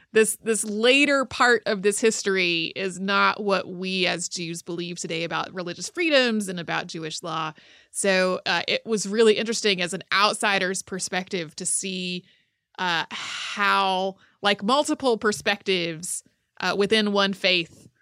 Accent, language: American, English